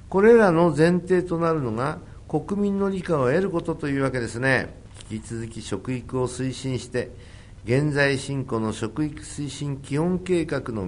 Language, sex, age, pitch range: Japanese, male, 50-69, 95-140 Hz